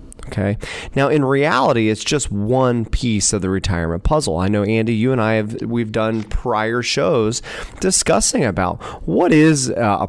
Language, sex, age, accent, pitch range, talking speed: English, male, 30-49, American, 95-115 Hz, 165 wpm